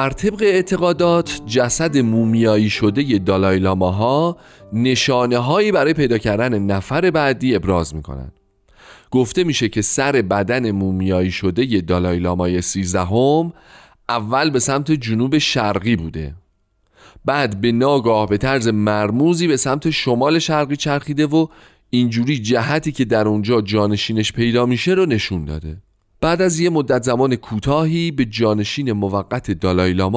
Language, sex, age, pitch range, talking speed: Persian, male, 30-49, 100-145 Hz, 135 wpm